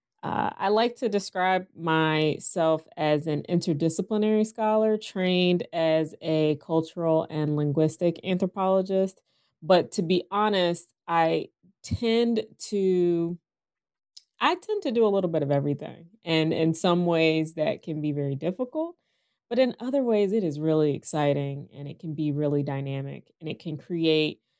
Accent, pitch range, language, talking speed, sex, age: American, 150-185 Hz, English, 145 wpm, female, 20-39